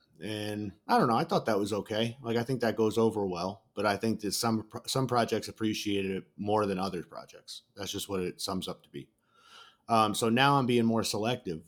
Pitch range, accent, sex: 95-115 Hz, American, male